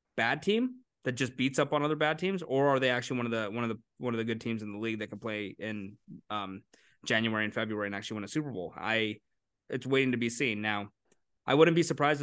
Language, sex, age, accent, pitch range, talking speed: English, male, 20-39, American, 110-140 Hz, 260 wpm